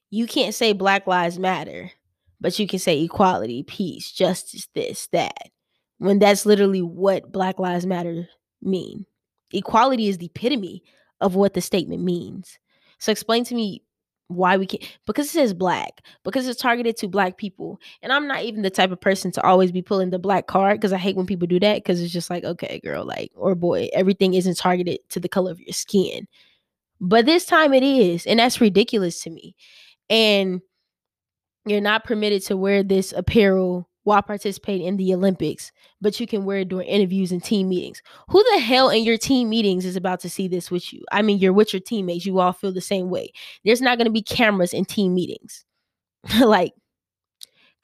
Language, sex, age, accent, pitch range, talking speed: English, female, 10-29, American, 185-215 Hz, 200 wpm